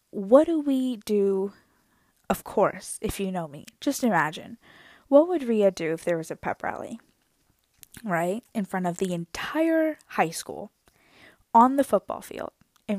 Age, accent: 10-29, American